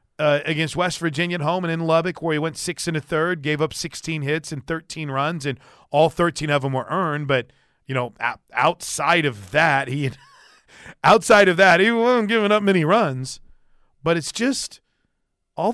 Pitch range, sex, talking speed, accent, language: 125-165 Hz, male, 190 wpm, American, English